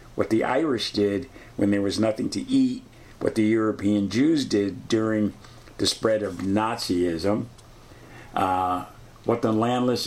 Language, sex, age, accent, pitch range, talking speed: English, male, 50-69, American, 105-120 Hz, 145 wpm